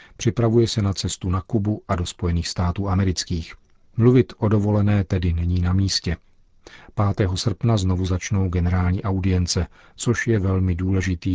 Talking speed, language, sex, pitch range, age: 150 wpm, Czech, male, 85-105 Hz, 40-59